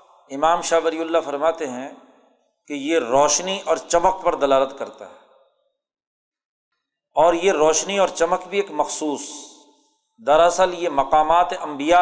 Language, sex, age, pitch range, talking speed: Urdu, male, 40-59, 160-205 Hz, 135 wpm